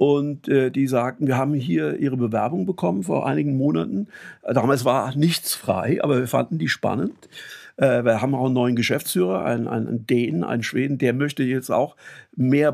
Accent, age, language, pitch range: German, 50-69, German, 125-155 Hz